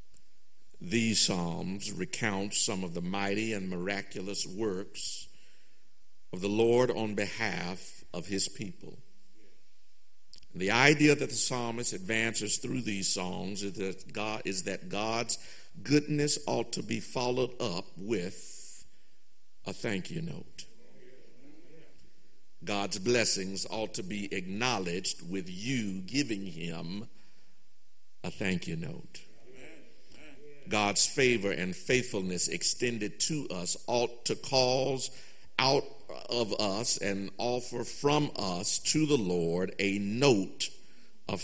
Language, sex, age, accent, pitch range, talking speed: English, male, 50-69, American, 95-125 Hz, 115 wpm